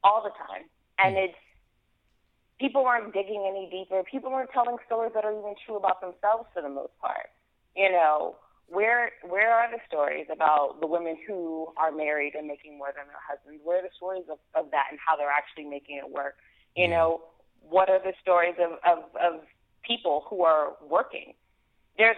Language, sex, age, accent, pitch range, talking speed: English, female, 30-49, American, 155-190 Hz, 190 wpm